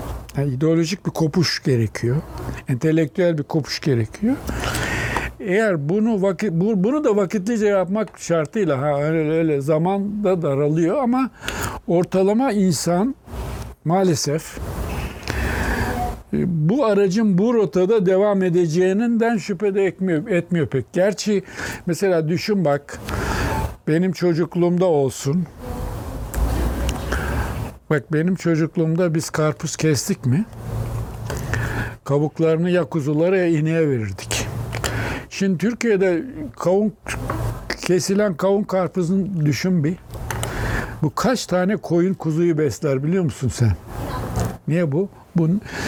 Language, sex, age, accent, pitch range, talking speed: Turkish, male, 60-79, native, 140-190 Hz, 100 wpm